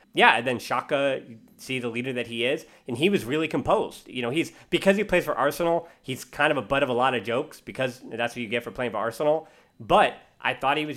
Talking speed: 265 wpm